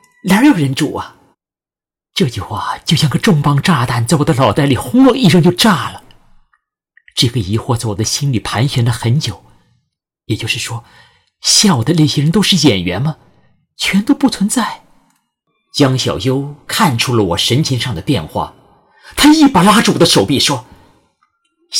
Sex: male